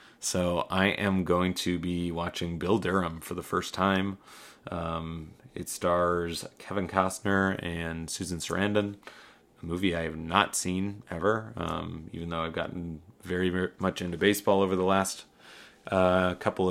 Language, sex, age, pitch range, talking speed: English, male, 30-49, 85-100 Hz, 150 wpm